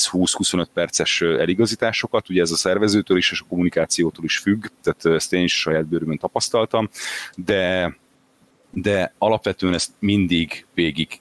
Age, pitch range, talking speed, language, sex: 30-49, 85-100 Hz, 135 wpm, Hungarian, male